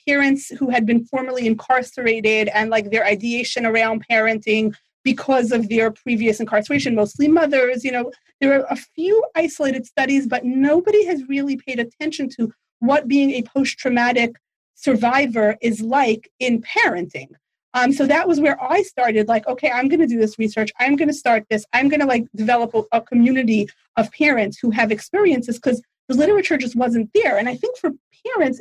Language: English